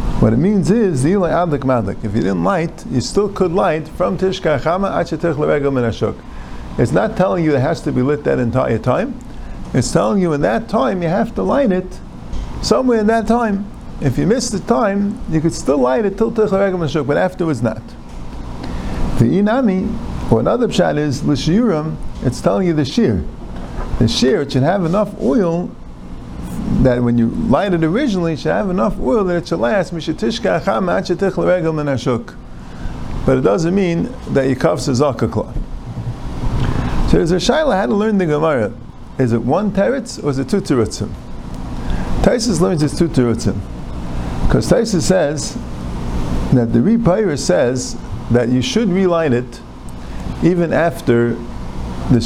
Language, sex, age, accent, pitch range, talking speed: English, male, 50-69, American, 115-190 Hz, 155 wpm